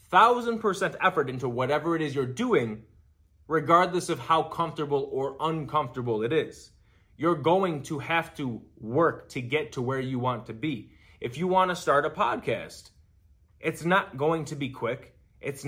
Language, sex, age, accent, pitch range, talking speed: English, male, 20-39, American, 105-165 Hz, 170 wpm